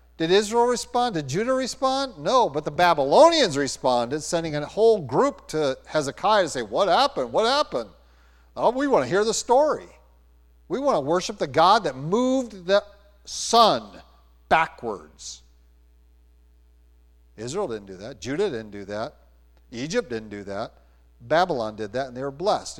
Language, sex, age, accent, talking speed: English, male, 50-69, American, 160 wpm